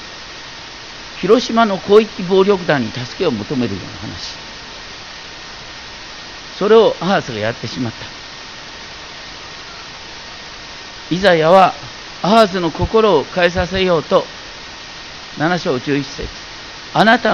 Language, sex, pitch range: Japanese, male, 160-225 Hz